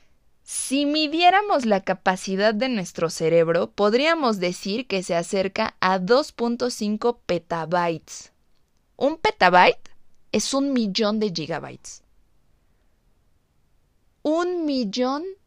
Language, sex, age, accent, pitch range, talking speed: Spanish, female, 20-39, Mexican, 190-270 Hz, 95 wpm